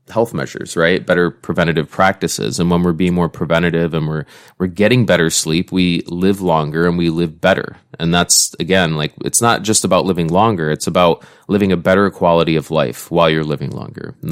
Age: 20-39